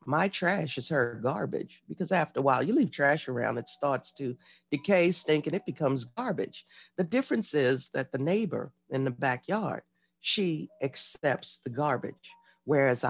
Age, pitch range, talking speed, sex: 50-69, 135-200 Hz, 165 wpm, female